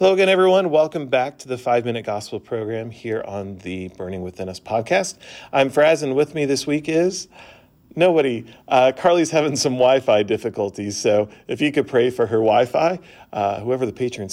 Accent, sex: American, male